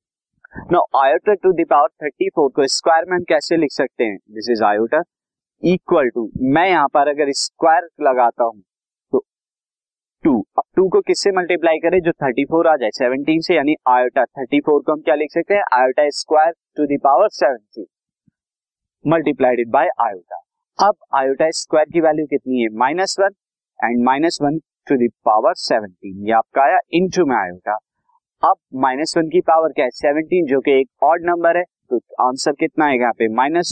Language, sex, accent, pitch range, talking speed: Hindi, male, native, 130-175 Hz, 105 wpm